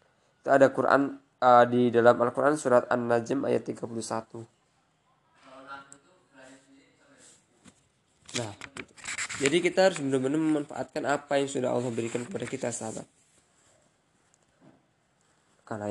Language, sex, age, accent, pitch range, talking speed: Indonesian, male, 20-39, native, 125-145 Hz, 95 wpm